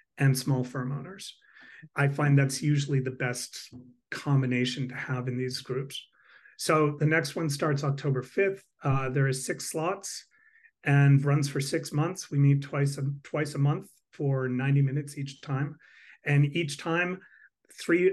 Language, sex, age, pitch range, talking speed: English, male, 40-59, 130-150 Hz, 160 wpm